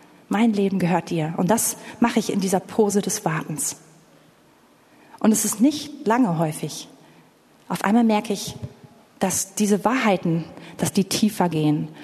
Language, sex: German, female